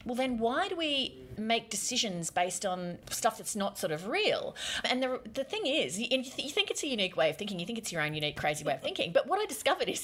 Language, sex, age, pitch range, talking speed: English, female, 30-49, 155-220 Hz, 275 wpm